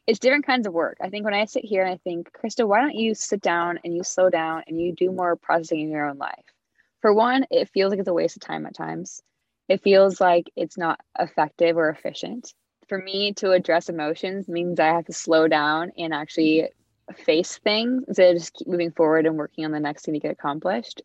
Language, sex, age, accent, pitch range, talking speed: English, female, 20-39, American, 165-210 Hz, 235 wpm